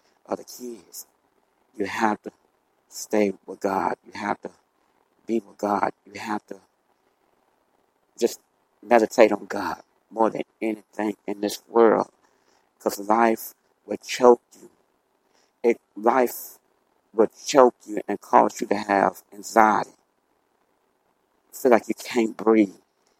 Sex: male